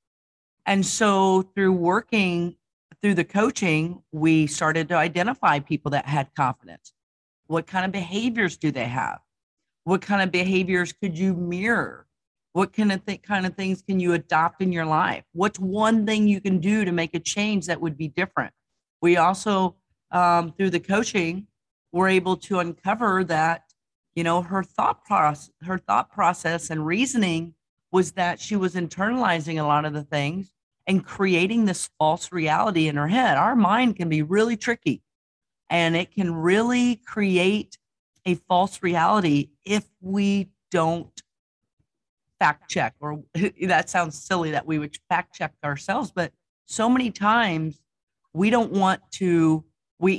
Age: 50-69